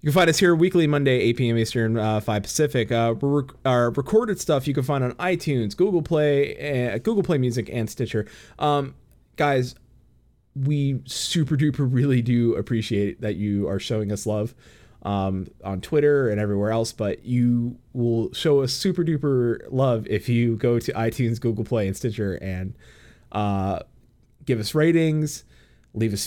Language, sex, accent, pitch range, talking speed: English, male, American, 110-145 Hz, 165 wpm